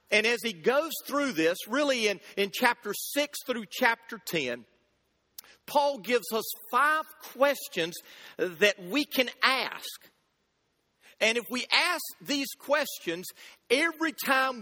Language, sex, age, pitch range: English, male, 50-69, 210-280 Hz